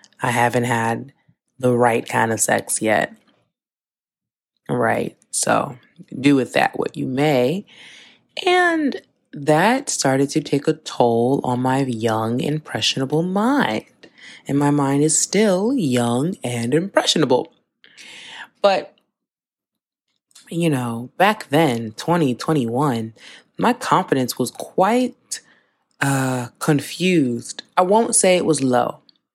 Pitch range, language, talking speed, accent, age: 125-180 Hz, English, 110 wpm, American, 20-39